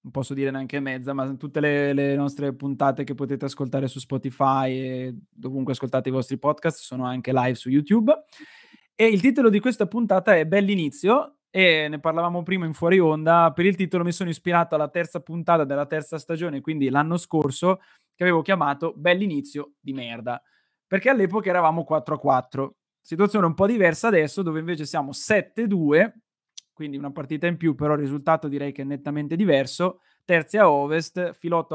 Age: 20-39